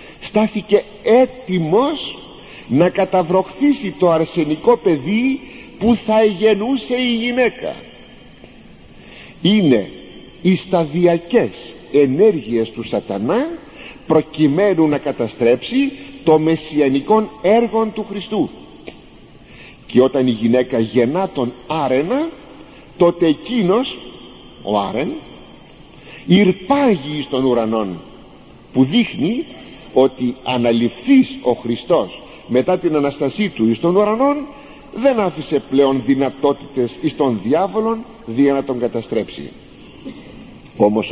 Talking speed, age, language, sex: 95 wpm, 50-69, Greek, male